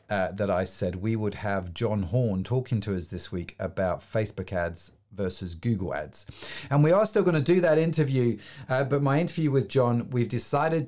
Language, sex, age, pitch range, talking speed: English, male, 40-59, 105-140 Hz, 205 wpm